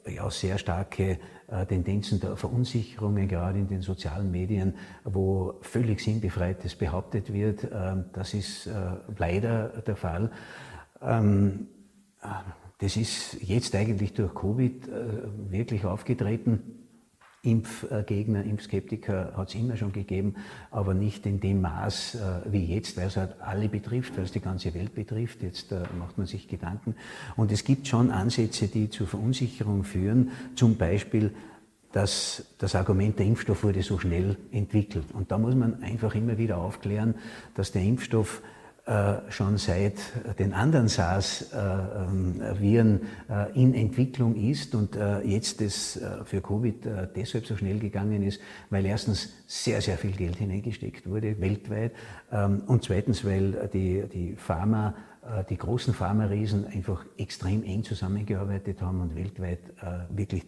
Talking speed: 135 wpm